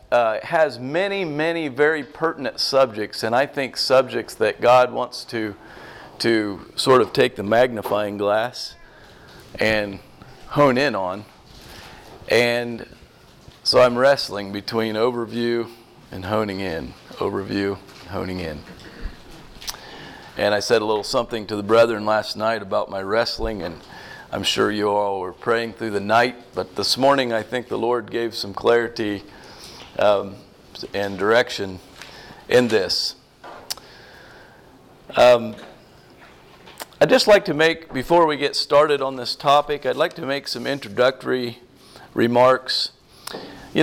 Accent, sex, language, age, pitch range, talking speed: American, male, English, 40-59, 105-140 Hz, 135 wpm